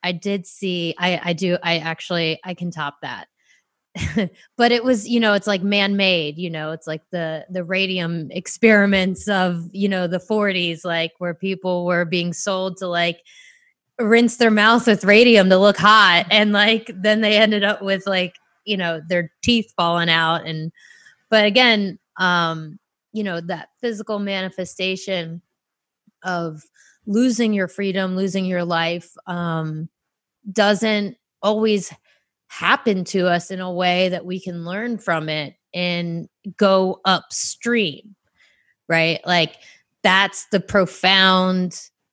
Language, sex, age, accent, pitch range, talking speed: English, female, 20-39, American, 170-200 Hz, 145 wpm